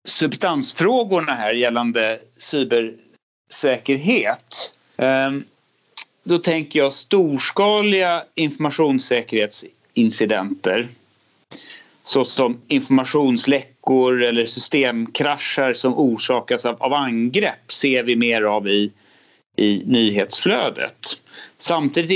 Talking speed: 70 wpm